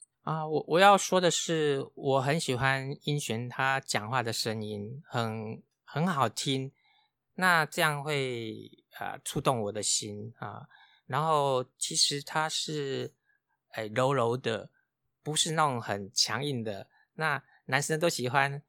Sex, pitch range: male, 115-155 Hz